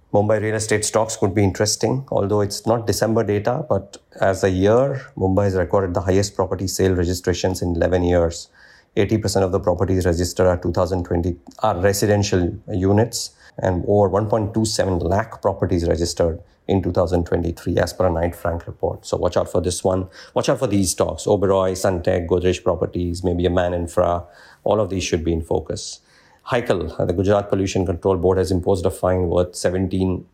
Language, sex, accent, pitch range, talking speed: English, male, Indian, 90-105 Hz, 175 wpm